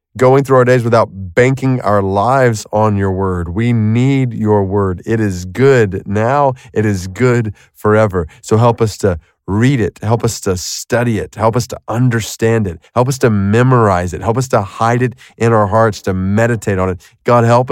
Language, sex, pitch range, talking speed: English, male, 100-130 Hz, 195 wpm